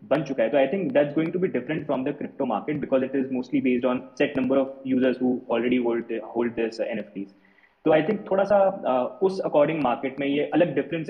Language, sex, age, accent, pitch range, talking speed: Hindi, male, 20-39, native, 125-160 Hz, 180 wpm